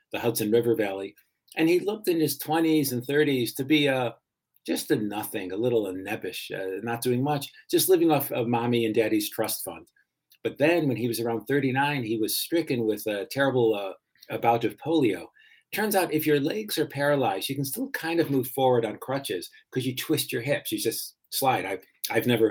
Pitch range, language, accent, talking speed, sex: 115-150 Hz, English, American, 210 wpm, male